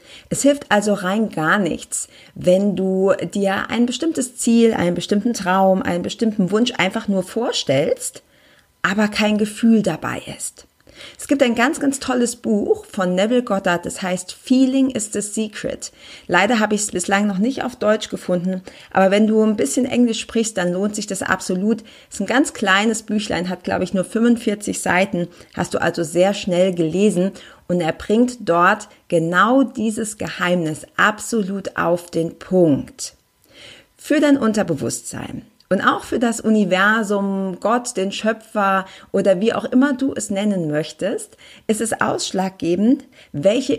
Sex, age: female, 40-59